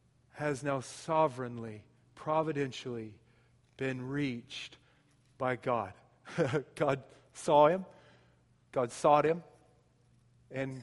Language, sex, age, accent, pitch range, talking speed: English, male, 40-59, American, 130-180 Hz, 85 wpm